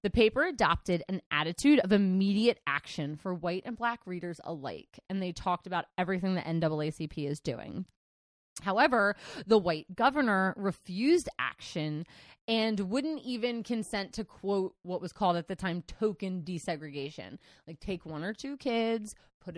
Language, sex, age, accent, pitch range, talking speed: English, female, 30-49, American, 175-235 Hz, 155 wpm